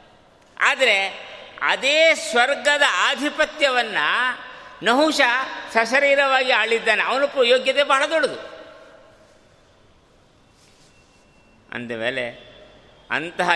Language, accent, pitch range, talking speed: Kannada, native, 135-215 Hz, 60 wpm